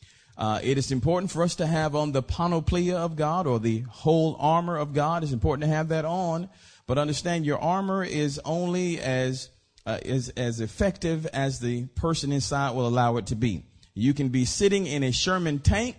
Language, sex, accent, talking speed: English, male, American, 190 wpm